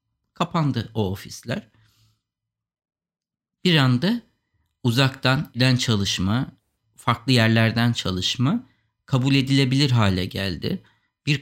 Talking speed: 85 wpm